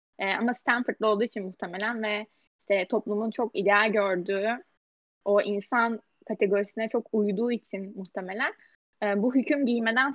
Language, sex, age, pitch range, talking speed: Turkish, female, 10-29, 210-245 Hz, 135 wpm